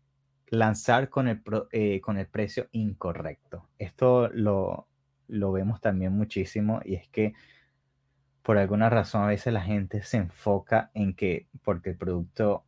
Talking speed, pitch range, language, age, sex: 145 wpm, 95-110 Hz, English, 20-39, male